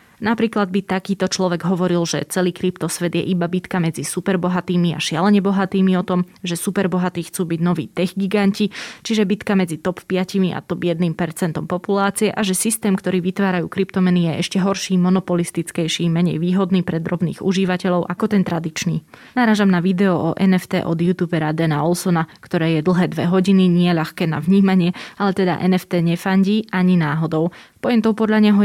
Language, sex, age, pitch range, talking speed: Slovak, female, 20-39, 170-190 Hz, 170 wpm